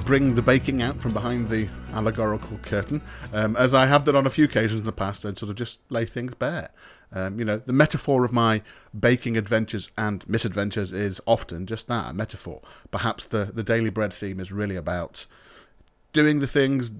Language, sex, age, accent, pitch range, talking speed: English, male, 30-49, British, 105-130 Hz, 200 wpm